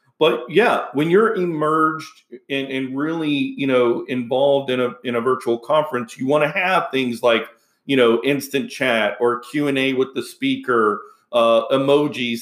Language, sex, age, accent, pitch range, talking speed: English, male, 40-59, American, 125-145 Hz, 165 wpm